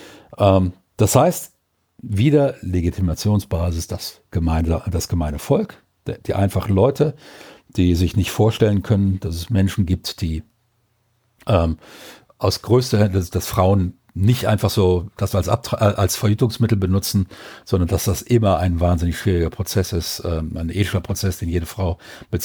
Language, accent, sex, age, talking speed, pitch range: German, German, male, 50-69, 145 wpm, 95-115 Hz